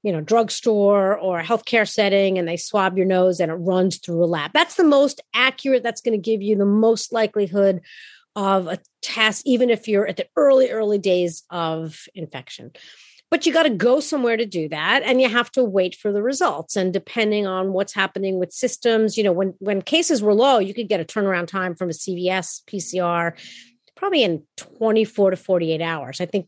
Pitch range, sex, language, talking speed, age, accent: 185-240 Hz, female, English, 210 wpm, 40-59, American